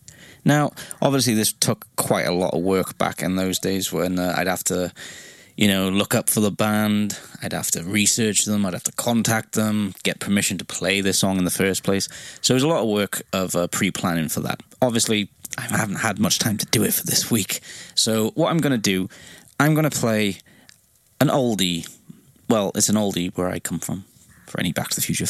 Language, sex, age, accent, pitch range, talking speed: English, male, 20-39, British, 90-115 Hz, 225 wpm